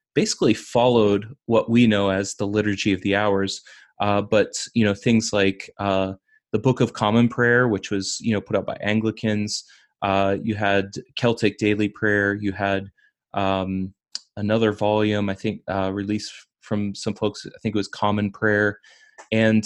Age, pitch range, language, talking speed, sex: 20-39, 100-115 Hz, English, 170 wpm, male